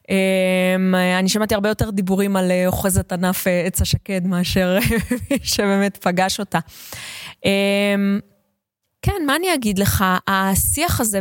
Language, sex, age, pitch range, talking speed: Hebrew, female, 20-39, 190-230 Hz, 135 wpm